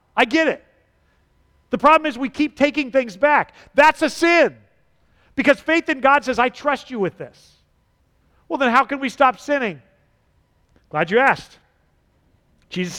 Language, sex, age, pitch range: English, male, 40-59, 195-250 Hz